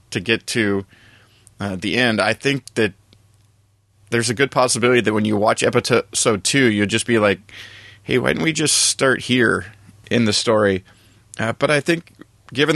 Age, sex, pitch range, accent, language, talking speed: 30-49, male, 105-120 Hz, American, English, 180 wpm